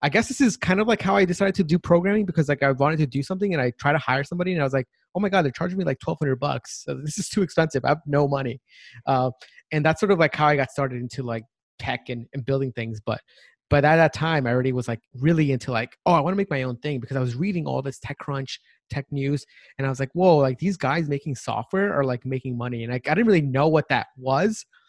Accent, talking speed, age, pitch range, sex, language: American, 285 wpm, 30-49, 135-175 Hz, male, English